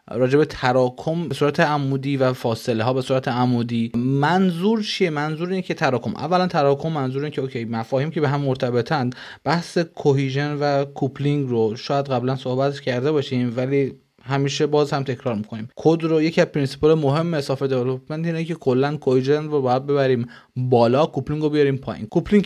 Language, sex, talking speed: Persian, male, 175 wpm